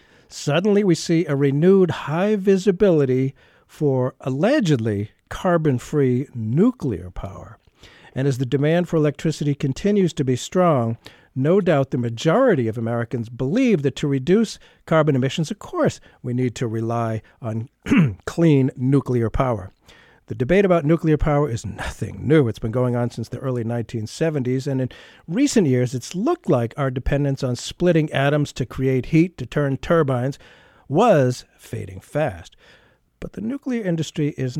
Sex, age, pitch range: male, 50-69, 125-170 Hz